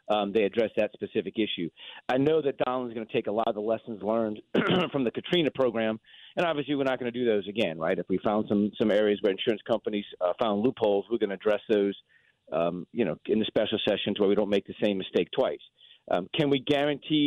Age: 40-59